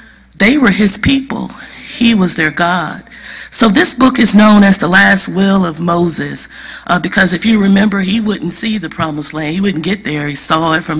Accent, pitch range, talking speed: American, 165-215 Hz, 205 wpm